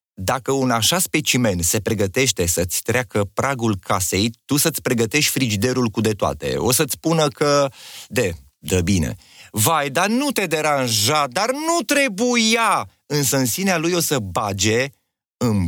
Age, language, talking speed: 30-49, Romanian, 155 wpm